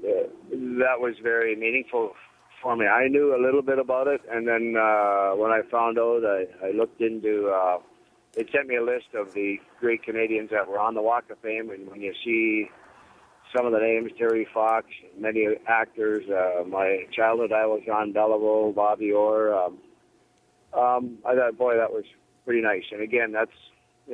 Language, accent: English, American